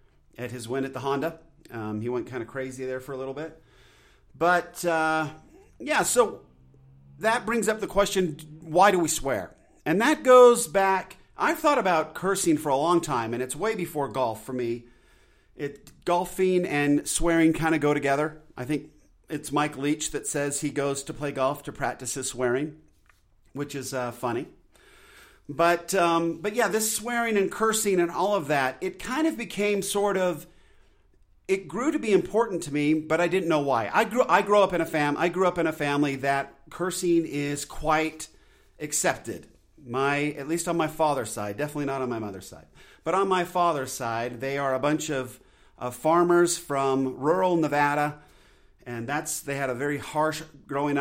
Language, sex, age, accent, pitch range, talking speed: English, male, 40-59, American, 135-175 Hz, 190 wpm